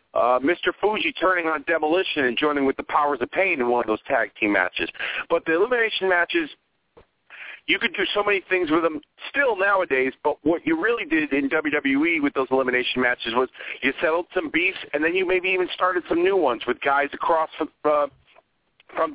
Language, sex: English, male